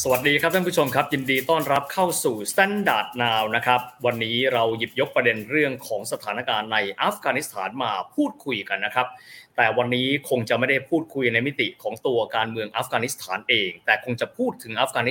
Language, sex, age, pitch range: Thai, male, 20-39, 115-140 Hz